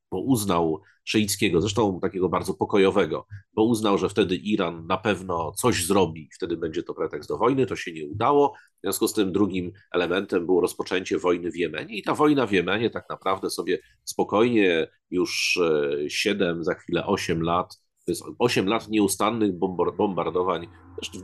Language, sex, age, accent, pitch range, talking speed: Polish, male, 40-59, native, 90-135 Hz, 160 wpm